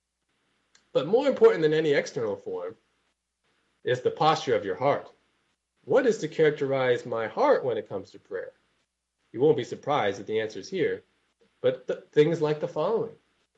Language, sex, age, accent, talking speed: English, male, 30-49, American, 170 wpm